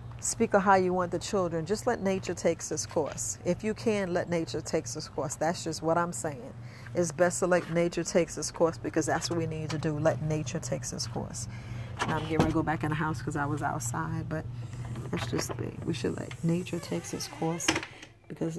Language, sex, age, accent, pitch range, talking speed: English, female, 40-59, American, 155-180 Hz, 230 wpm